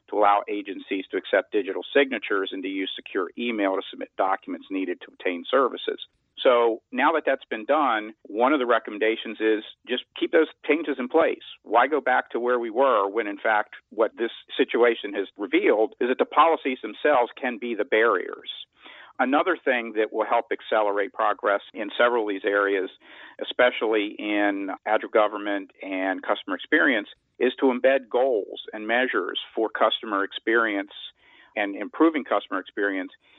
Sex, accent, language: male, American, English